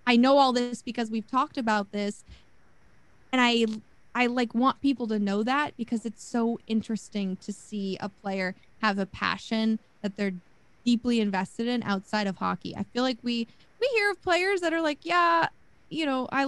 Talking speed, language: 190 wpm, English